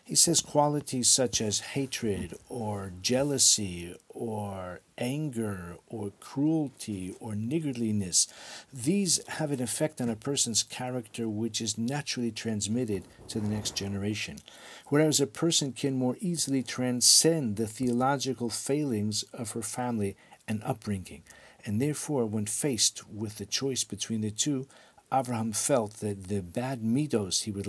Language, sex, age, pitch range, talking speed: English, male, 50-69, 105-130 Hz, 135 wpm